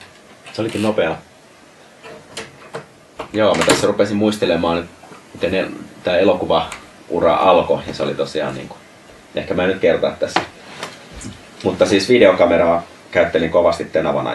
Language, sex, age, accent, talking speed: Finnish, male, 30-49, native, 125 wpm